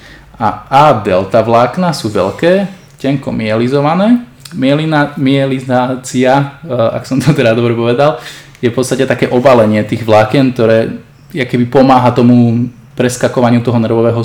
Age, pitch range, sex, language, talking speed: 20-39, 115-135 Hz, male, Slovak, 120 wpm